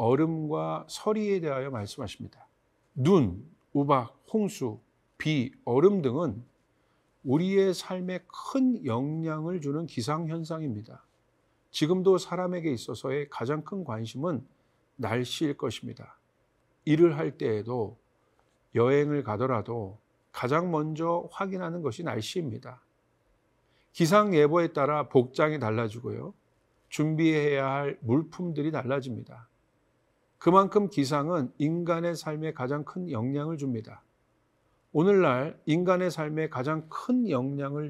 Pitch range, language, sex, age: 125-170 Hz, Korean, male, 50-69